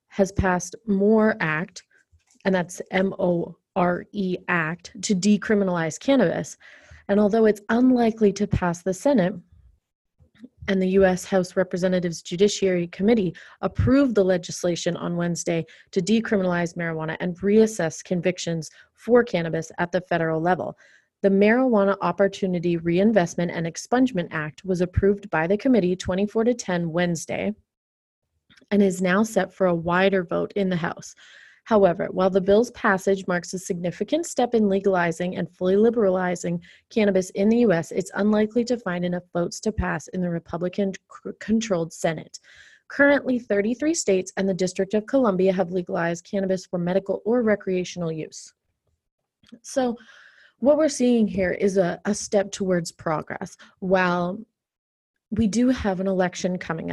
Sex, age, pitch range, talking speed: female, 30-49, 175-210 Hz, 140 wpm